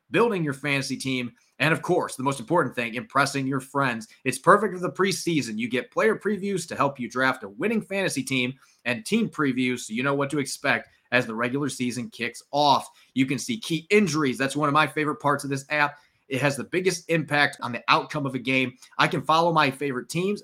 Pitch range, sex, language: 130-170 Hz, male, English